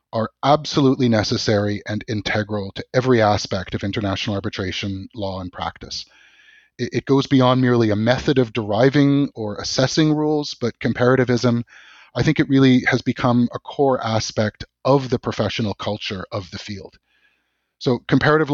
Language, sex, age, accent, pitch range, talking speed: English, male, 30-49, American, 110-135 Hz, 150 wpm